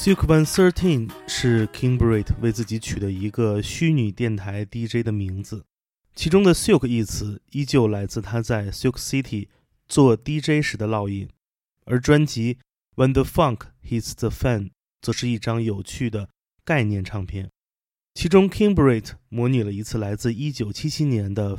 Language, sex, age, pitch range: Chinese, male, 20-39, 105-130 Hz